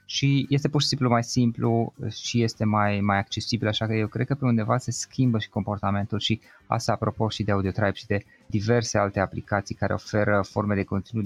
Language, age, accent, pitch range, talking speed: Romanian, 20-39, native, 100-130 Hz, 210 wpm